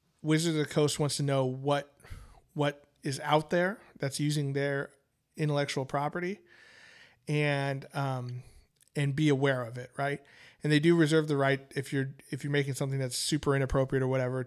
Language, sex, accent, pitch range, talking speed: English, male, American, 135-155 Hz, 175 wpm